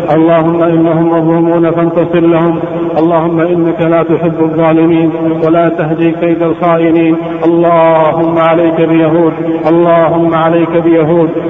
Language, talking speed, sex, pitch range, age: Arabic, 105 wpm, male, 165-175 Hz, 50-69